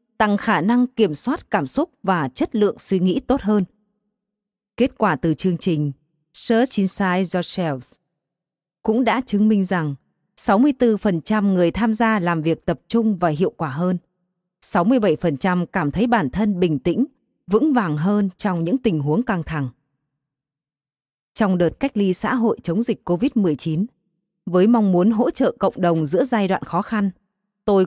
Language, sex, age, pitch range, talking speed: Vietnamese, female, 20-39, 170-220 Hz, 165 wpm